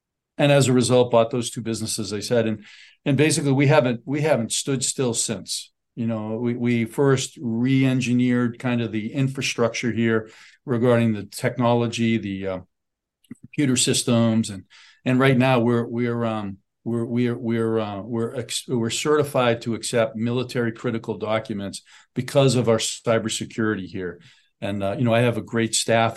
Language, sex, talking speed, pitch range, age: English, male, 165 wpm, 110-125 Hz, 50-69